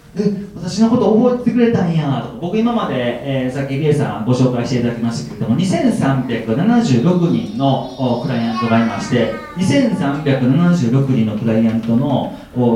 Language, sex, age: Japanese, male, 40-59